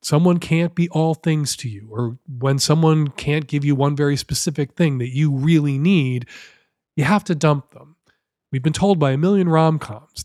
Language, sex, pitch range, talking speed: English, male, 150-200 Hz, 195 wpm